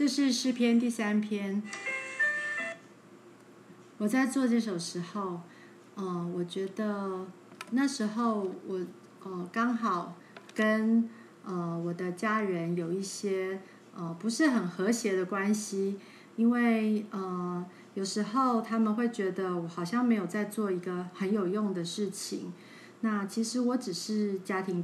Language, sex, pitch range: Chinese, female, 185-230 Hz